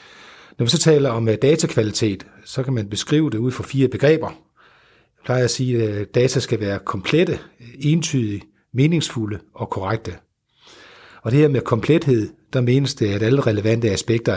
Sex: male